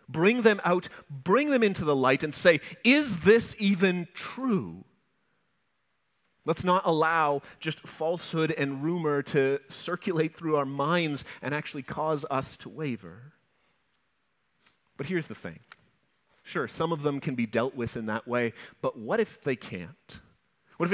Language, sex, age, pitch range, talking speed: English, male, 30-49, 145-180 Hz, 155 wpm